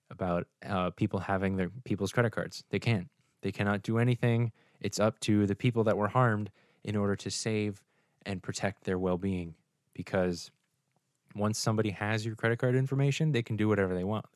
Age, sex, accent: 10-29, male, American